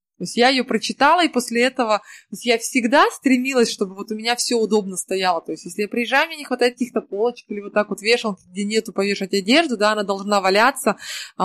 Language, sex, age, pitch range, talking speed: Russian, female, 20-39, 190-240 Hz, 230 wpm